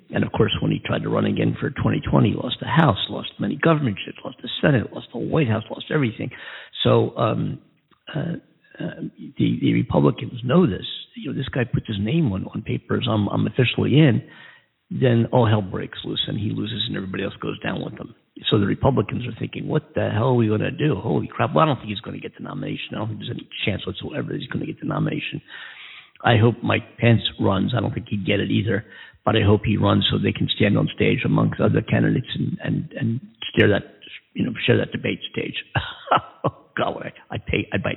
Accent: American